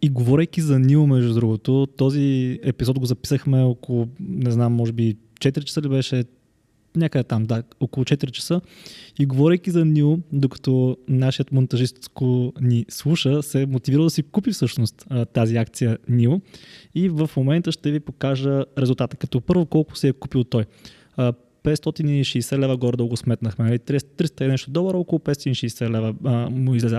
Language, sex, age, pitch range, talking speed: Bulgarian, male, 20-39, 120-145 Hz, 155 wpm